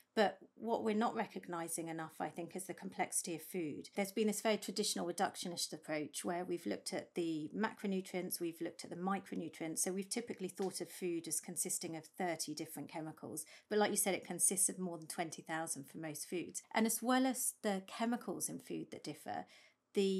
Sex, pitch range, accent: female, 165-200 Hz, British